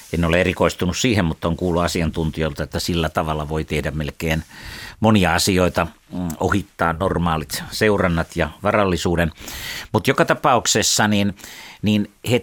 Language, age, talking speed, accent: Finnish, 60-79, 130 wpm, native